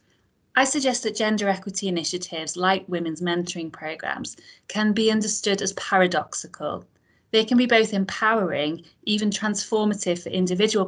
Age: 30-49